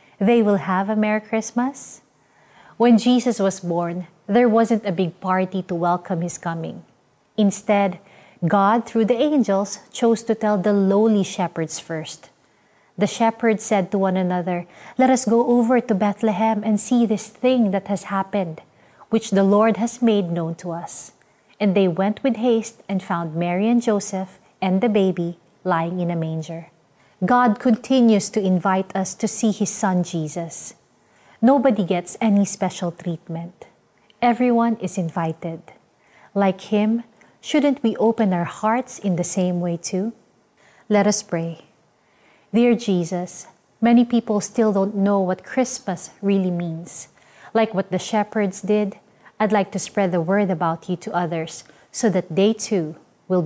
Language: Filipino